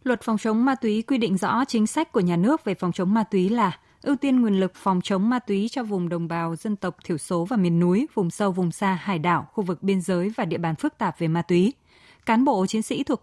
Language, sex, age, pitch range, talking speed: Vietnamese, female, 20-39, 180-230 Hz, 275 wpm